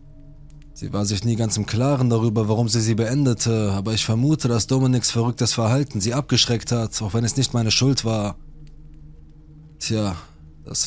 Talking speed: 170 wpm